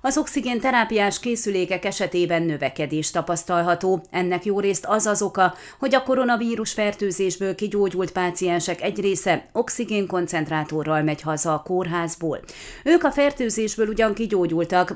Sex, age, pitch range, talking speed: female, 30-49, 175-220 Hz, 125 wpm